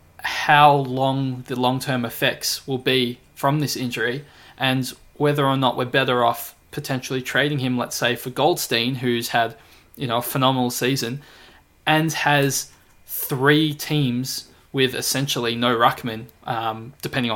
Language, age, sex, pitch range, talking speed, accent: English, 20-39, male, 115-140 Hz, 145 wpm, Australian